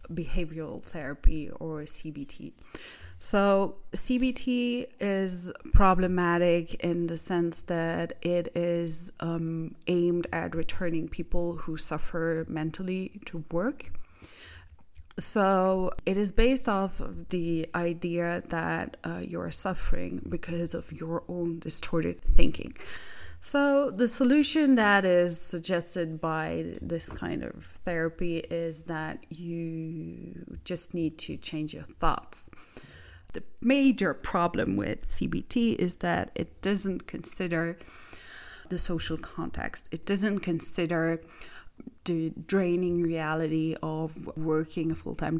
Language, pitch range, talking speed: English, 160-185 Hz, 110 wpm